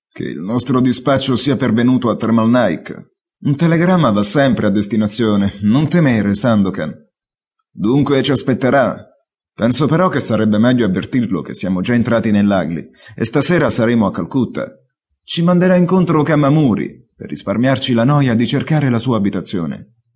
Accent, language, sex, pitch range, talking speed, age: native, Italian, male, 110-140 Hz, 150 wpm, 30-49